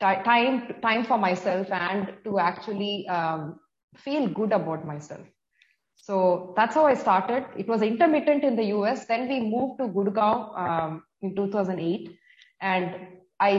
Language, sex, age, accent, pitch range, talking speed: English, female, 20-39, Indian, 190-245 Hz, 145 wpm